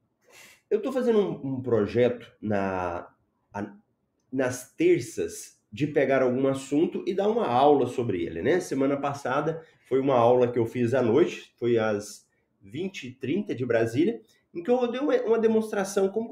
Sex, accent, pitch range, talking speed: male, Brazilian, 120-185 Hz, 160 wpm